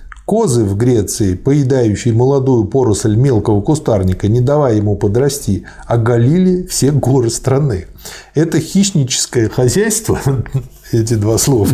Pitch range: 110-140 Hz